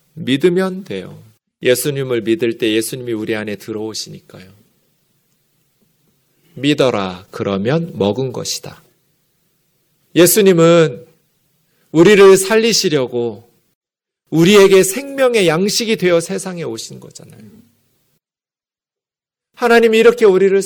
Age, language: 40-59, Korean